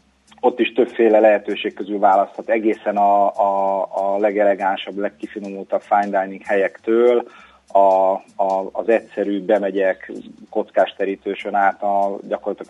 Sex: male